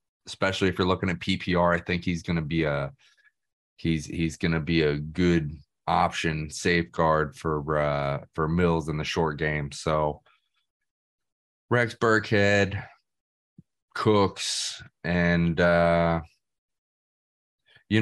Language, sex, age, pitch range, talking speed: English, male, 20-39, 80-100 Hz, 115 wpm